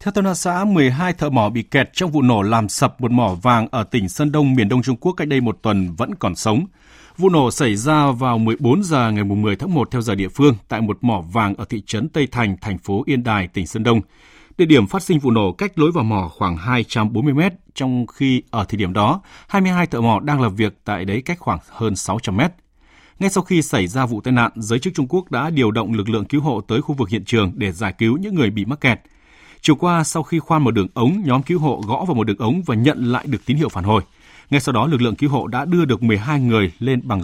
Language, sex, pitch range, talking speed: Vietnamese, male, 105-150 Hz, 265 wpm